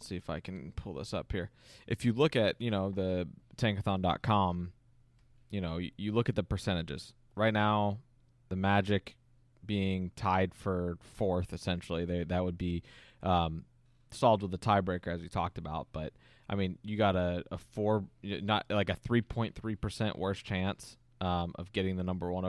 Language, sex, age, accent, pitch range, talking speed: English, male, 20-39, American, 90-115 Hz, 180 wpm